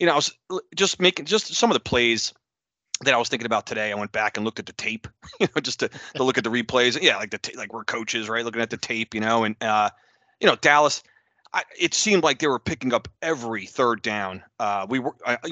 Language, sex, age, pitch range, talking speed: English, male, 30-49, 110-130 Hz, 255 wpm